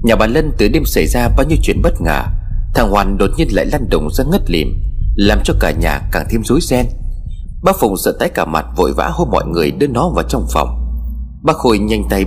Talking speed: 245 wpm